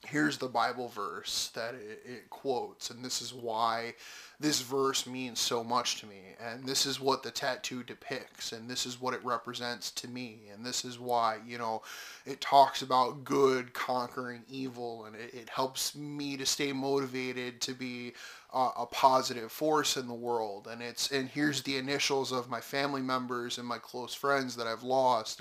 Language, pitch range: English, 120-135 Hz